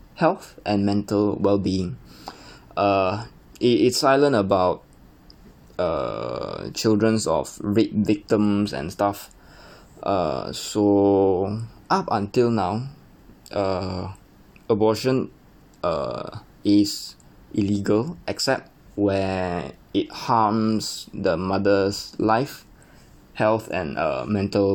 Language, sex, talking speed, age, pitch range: English, male, 90 wpm, 20-39, 100-120 Hz